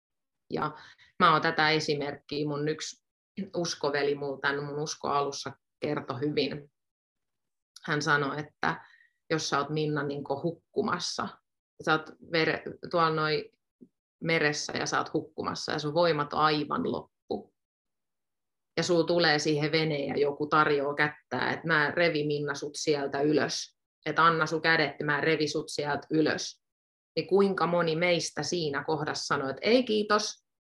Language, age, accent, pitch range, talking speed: Finnish, 30-49, native, 145-170 Hz, 145 wpm